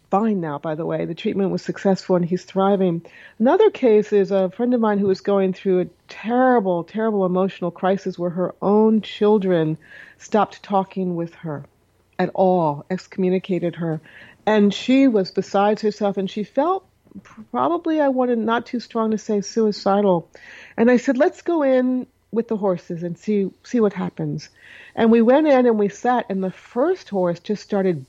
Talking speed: 180 wpm